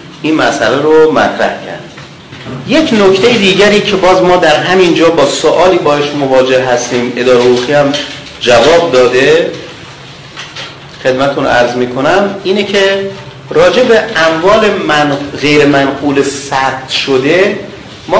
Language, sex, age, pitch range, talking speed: Persian, male, 40-59, 140-200 Hz, 120 wpm